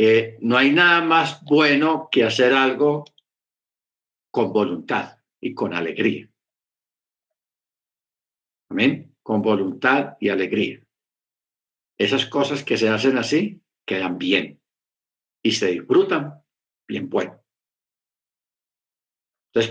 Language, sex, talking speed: Spanish, male, 100 wpm